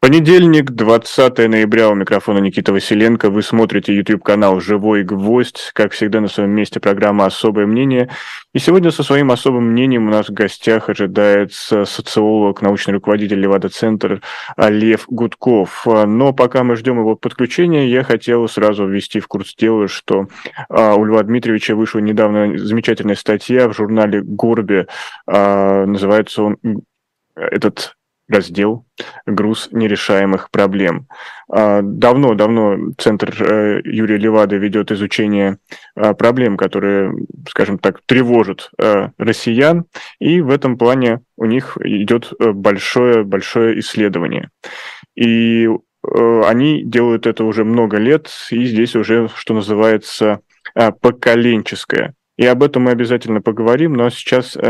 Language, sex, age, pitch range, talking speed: Russian, male, 20-39, 100-115 Hz, 120 wpm